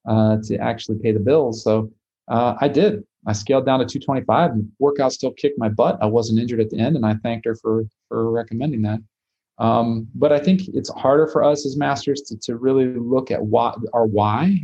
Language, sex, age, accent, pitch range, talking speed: English, male, 30-49, American, 110-130 Hz, 215 wpm